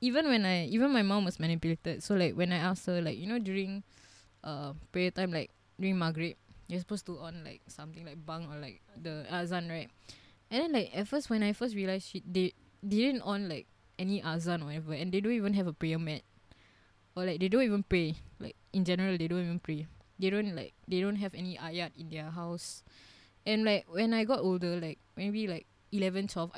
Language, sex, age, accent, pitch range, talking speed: English, female, 20-39, Malaysian, 160-195 Hz, 225 wpm